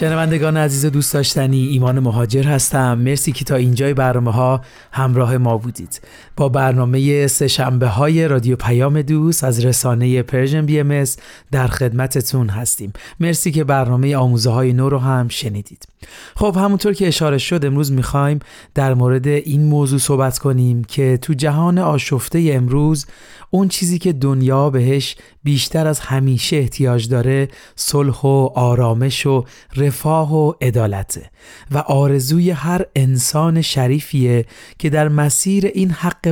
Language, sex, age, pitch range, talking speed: Persian, male, 30-49, 125-150 Hz, 145 wpm